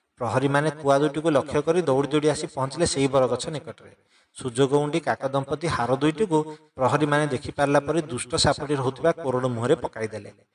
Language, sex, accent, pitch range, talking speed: English, male, Indian, 130-155 Hz, 195 wpm